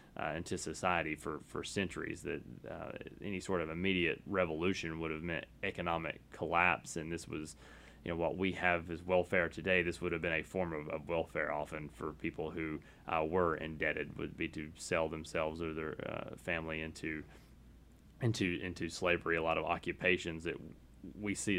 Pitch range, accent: 80-95 Hz, American